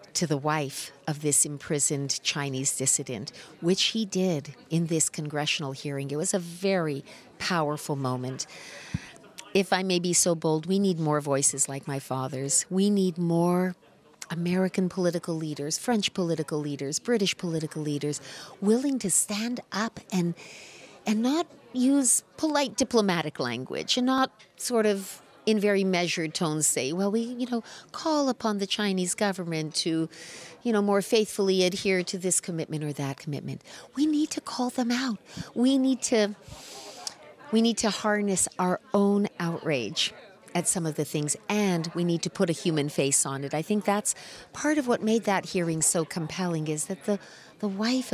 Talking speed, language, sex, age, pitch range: 165 wpm, English, female, 40-59, 155-210 Hz